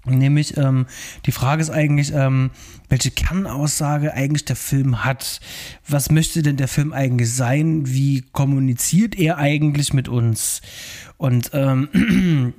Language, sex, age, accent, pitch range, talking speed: German, male, 20-39, German, 130-160 Hz, 135 wpm